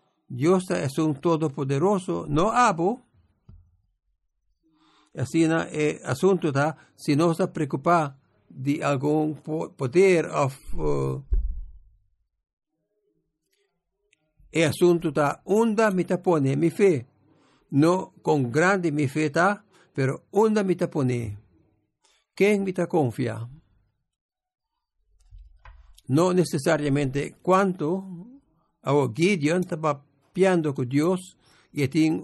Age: 60-79